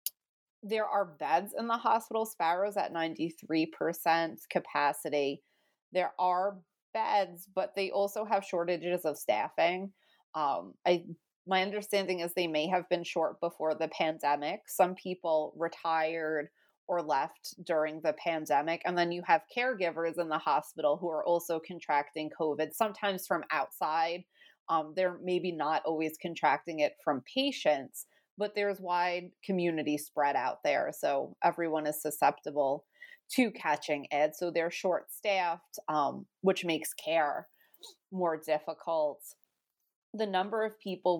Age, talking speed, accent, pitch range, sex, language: 30-49, 135 wpm, American, 160-190 Hz, female, English